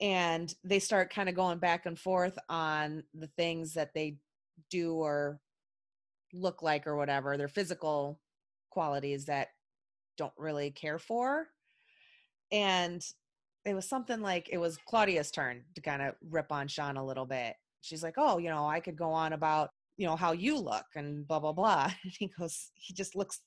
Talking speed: 180 wpm